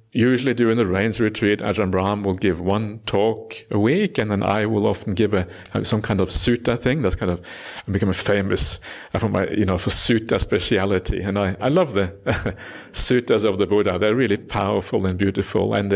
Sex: male